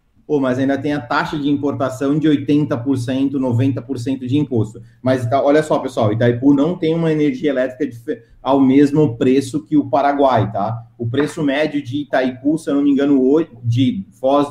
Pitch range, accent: 130-160 Hz, Brazilian